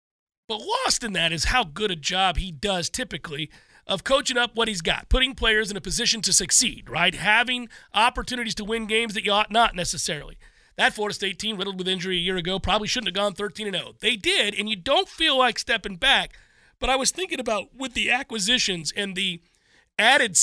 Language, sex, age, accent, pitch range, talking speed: English, male, 40-59, American, 180-230 Hz, 210 wpm